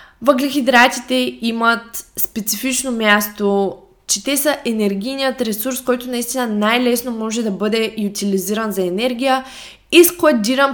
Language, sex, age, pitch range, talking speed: Bulgarian, female, 20-39, 200-250 Hz, 115 wpm